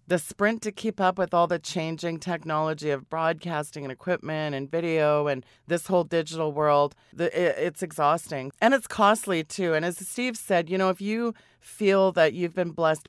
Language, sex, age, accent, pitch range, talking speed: English, female, 30-49, American, 150-180 Hz, 185 wpm